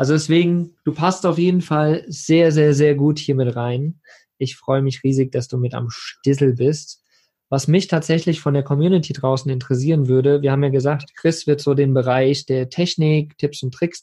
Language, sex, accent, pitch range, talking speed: German, male, German, 130-155 Hz, 200 wpm